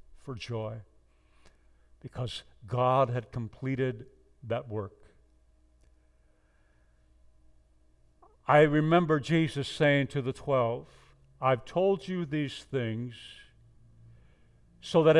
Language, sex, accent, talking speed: English, male, American, 85 wpm